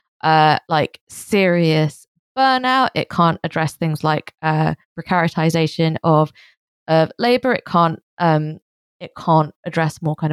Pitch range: 155-175 Hz